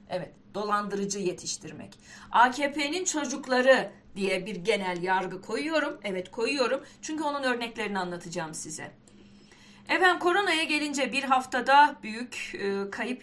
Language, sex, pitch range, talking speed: Turkish, female, 195-270 Hz, 115 wpm